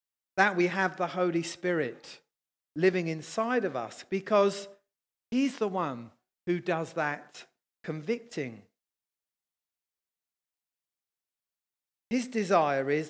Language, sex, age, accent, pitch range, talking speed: English, male, 40-59, British, 165-220 Hz, 95 wpm